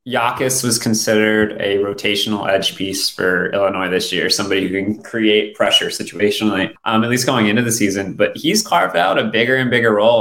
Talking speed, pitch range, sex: 195 wpm, 105-115 Hz, male